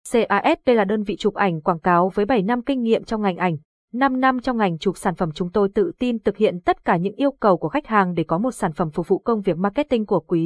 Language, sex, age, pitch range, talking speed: Vietnamese, female, 20-39, 190-235 Hz, 285 wpm